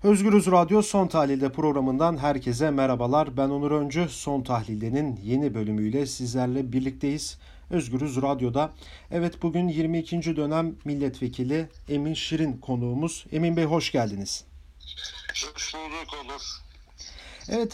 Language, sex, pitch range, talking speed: German, male, 135-180 Hz, 115 wpm